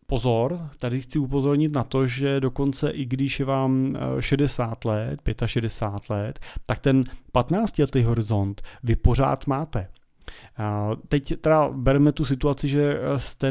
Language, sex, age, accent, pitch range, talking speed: Czech, male, 30-49, native, 115-135 Hz, 135 wpm